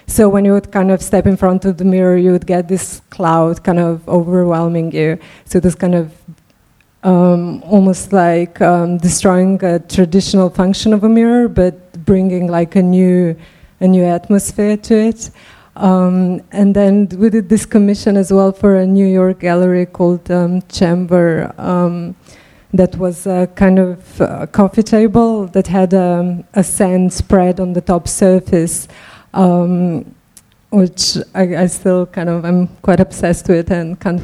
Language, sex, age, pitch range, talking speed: English, female, 20-39, 175-195 Hz, 165 wpm